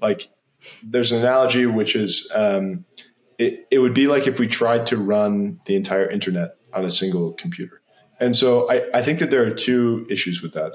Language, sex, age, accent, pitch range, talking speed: English, male, 20-39, American, 105-140 Hz, 200 wpm